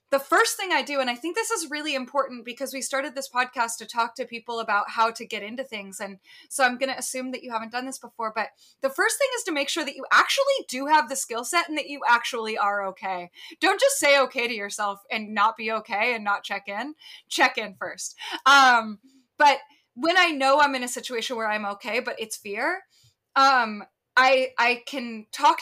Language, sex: English, female